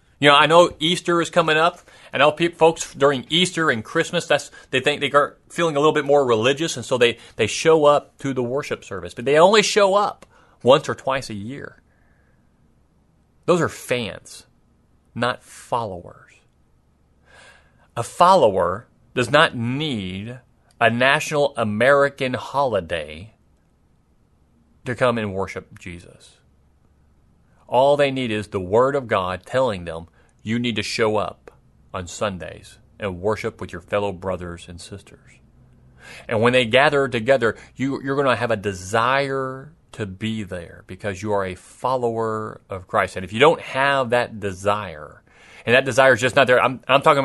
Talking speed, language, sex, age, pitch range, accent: 165 wpm, English, male, 30-49, 100-140 Hz, American